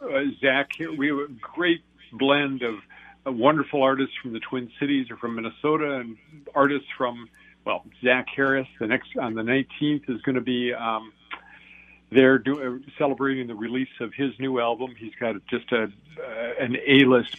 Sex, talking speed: male, 175 wpm